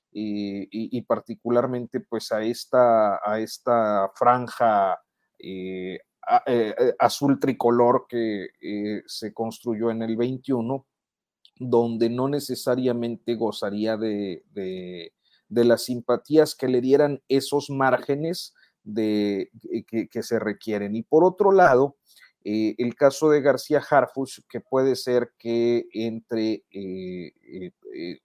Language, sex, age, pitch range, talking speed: Spanish, male, 40-59, 105-135 Hz, 120 wpm